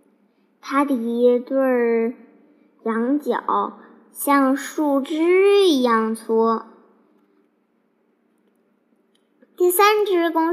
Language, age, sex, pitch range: Chinese, 20-39, male, 260-345 Hz